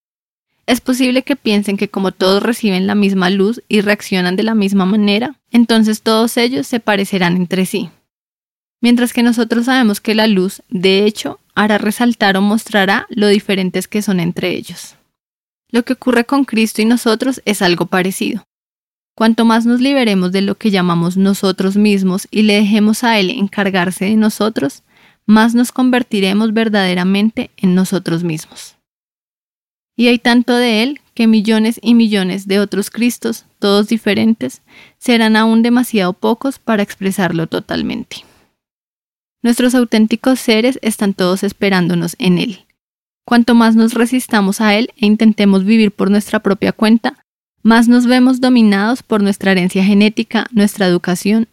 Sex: female